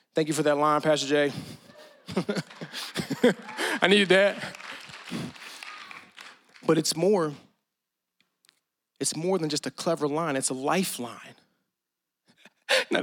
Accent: American